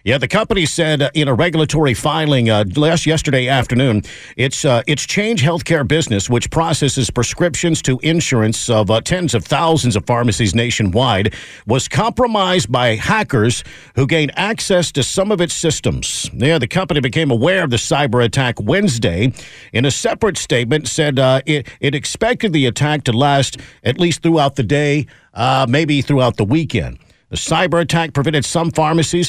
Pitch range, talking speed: 125-165 Hz, 170 wpm